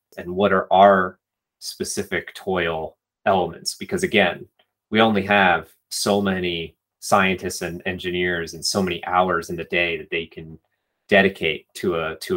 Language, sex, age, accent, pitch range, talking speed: English, male, 30-49, American, 90-120 Hz, 150 wpm